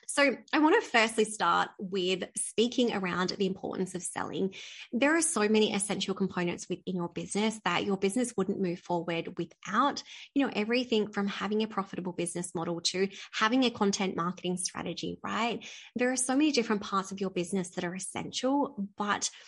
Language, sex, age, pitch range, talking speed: English, female, 20-39, 190-240 Hz, 180 wpm